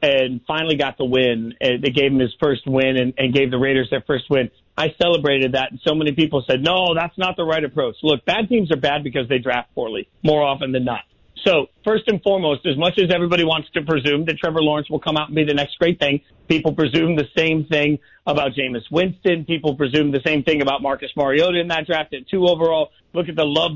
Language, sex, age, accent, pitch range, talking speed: English, male, 40-59, American, 140-170 Hz, 240 wpm